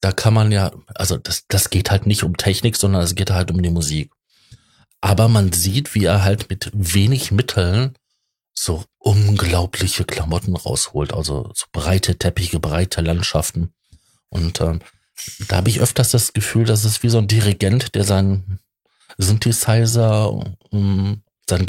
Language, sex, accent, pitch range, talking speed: German, male, German, 90-110 Hz, 160 wpm